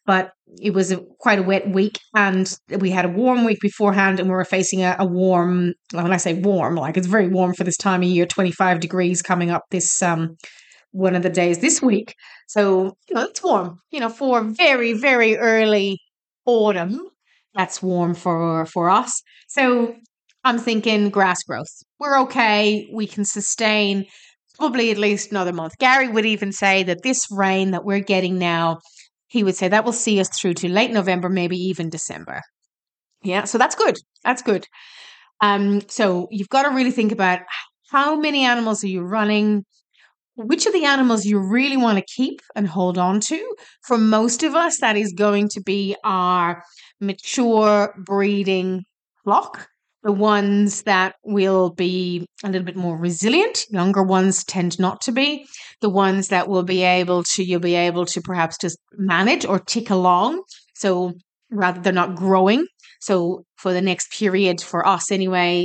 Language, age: English, 30-49